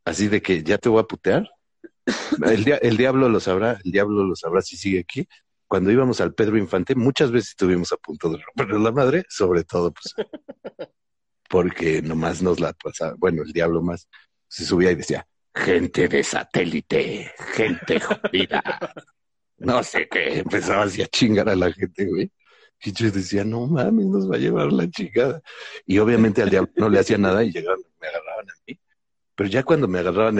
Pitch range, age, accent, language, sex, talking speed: 90-125 Hz, 60-79, Mexican, Spanish, male, 190 wpm